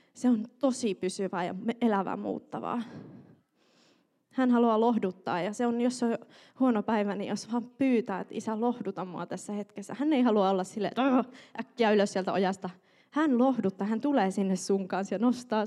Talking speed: 170 wpm